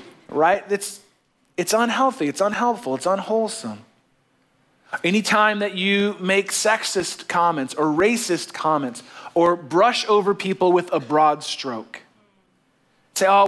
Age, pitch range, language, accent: 30-49, 165-210 Hz, English, American